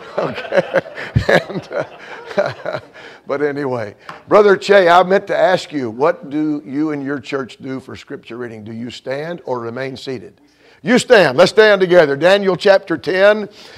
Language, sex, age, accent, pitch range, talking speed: English, male, 50-69, American, 135-185 Hz, 155 wpm